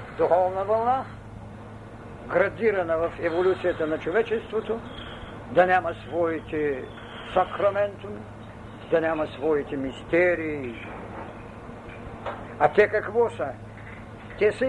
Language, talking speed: Bulgarian, 85 wpm